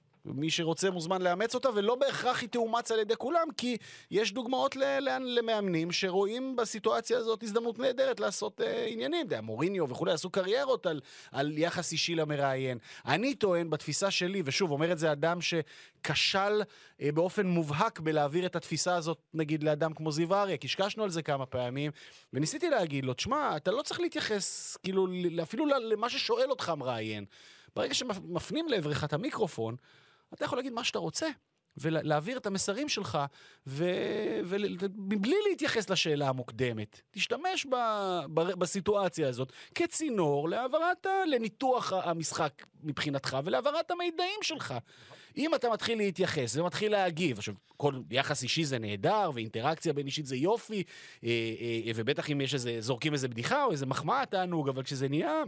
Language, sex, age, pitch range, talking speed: Hebrew, male, 30-49, 150-235 Hz, 150 wpm